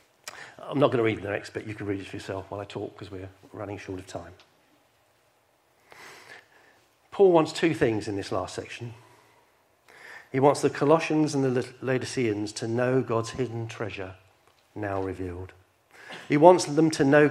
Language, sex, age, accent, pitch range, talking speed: English, male, 50-69, British, 110-160 Hz, 175 wpm